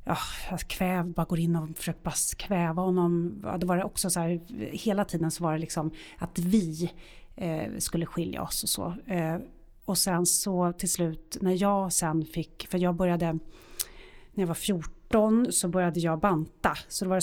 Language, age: Swedish, 30-49